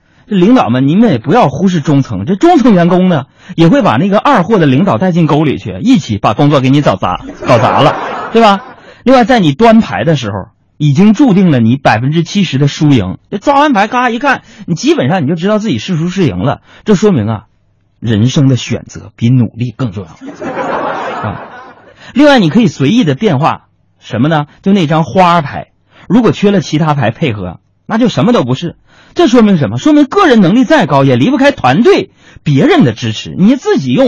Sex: male